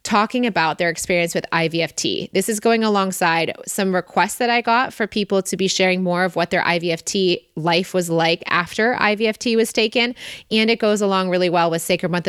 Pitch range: 170-205 Hz